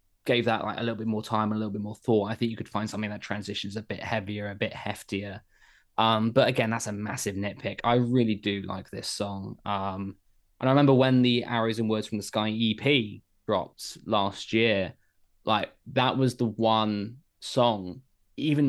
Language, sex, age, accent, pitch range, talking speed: English, male, 20-39, British, 100-115 Hz, 200 wpm